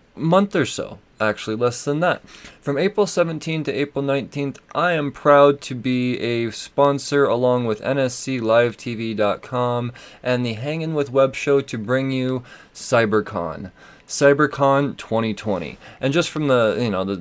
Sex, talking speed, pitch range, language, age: male, 145 wpm, 115-145 Hz, English, 20-39